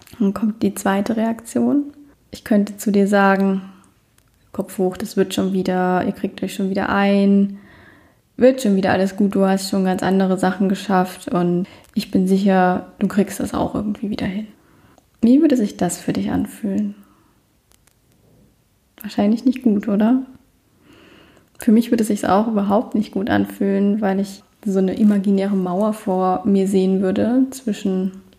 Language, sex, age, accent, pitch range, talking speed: German, female, 20-39, German, 190-215 Hz, 165 wpm